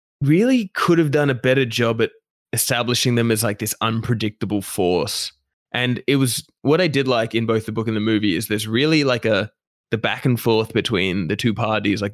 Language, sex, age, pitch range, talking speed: English, male, 20-39, 105-125 Hz, 215 wpm